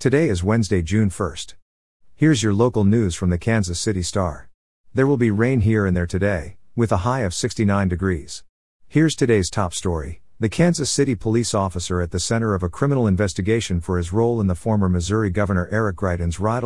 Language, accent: English, American